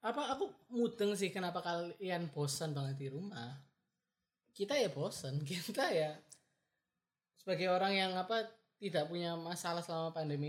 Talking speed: 135 wpm